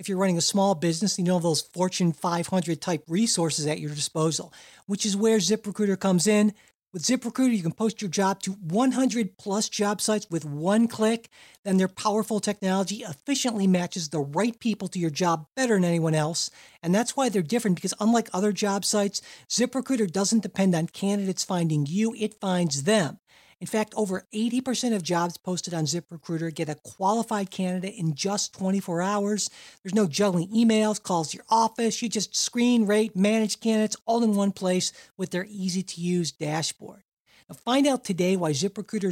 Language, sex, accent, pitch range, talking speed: English, male, American, 175-215 Hz, 180 wpm